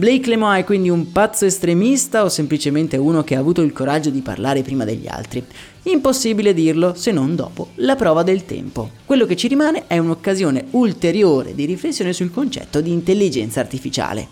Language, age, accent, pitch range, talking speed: Italian, 30-49, native, 140-200 Hz, 180 wpm